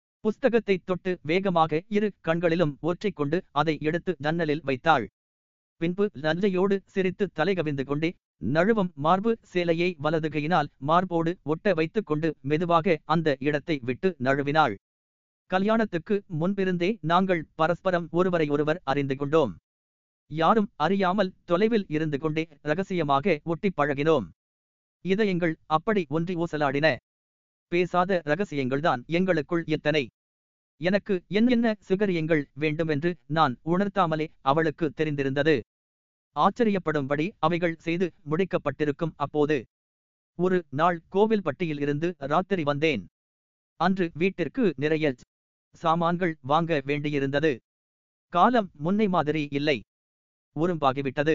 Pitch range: 145-180 Hz